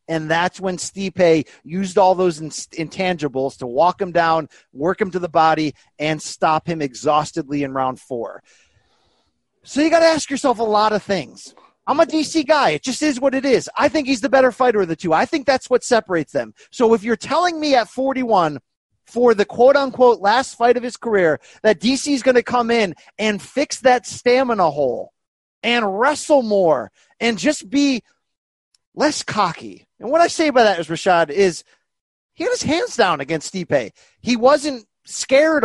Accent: American